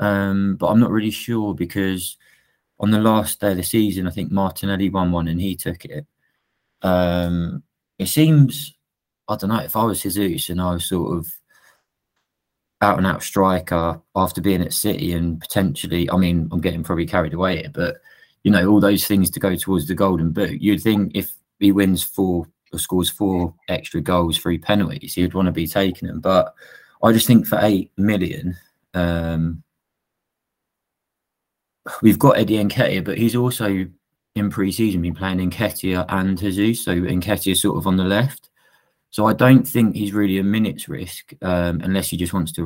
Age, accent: 20-39, British